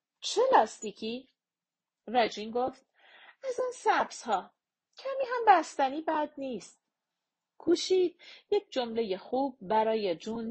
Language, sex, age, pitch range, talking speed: Persian, female, 40-59, 215-305 Hz, 105 wpm